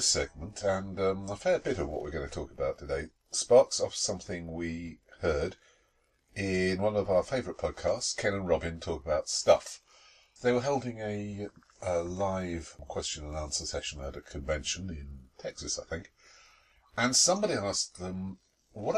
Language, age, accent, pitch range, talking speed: English, 50-69, British, 80-95 Hz, 170 wpm